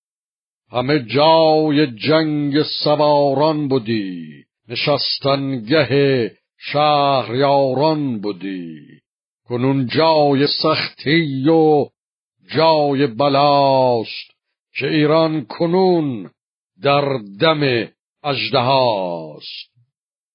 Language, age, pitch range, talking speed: Persian, 60-79, 115-145 Hz, 60 wpm